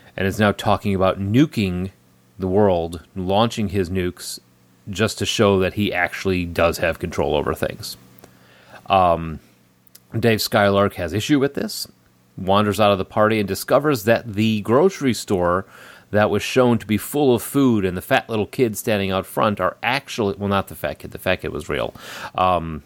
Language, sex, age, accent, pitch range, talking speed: English, male, 30-49, American, 85-105 Hz, 180 wpm